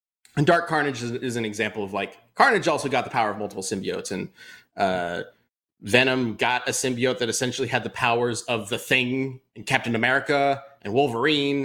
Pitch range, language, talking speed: 115-150 Hz, English, 180 wpm